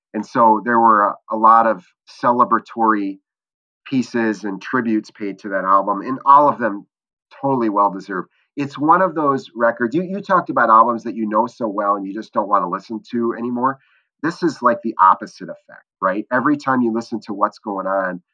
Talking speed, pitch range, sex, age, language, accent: 200 wpm, 105-125 Hz, male, 30-49, English, American